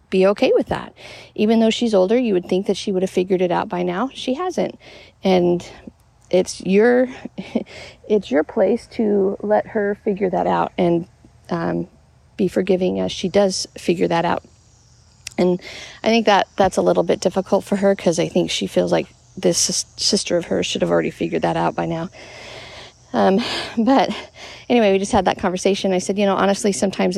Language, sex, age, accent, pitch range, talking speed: English, female, 40-59, American, 165-210 Hz, 190 wpm